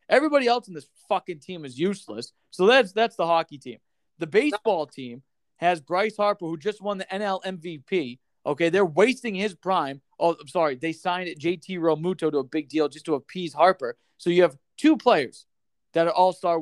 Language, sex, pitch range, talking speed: English, male, 155-195 Hz, 195 wpm